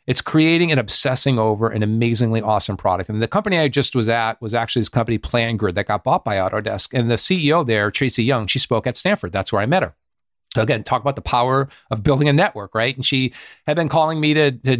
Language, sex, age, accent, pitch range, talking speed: English, male, 40-59, American, 110-140 Hz, 245 wpm